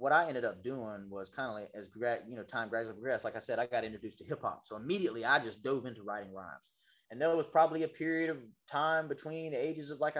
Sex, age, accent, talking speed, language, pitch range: male, 30-49, American, 265 wpm, English, 105-150 Hz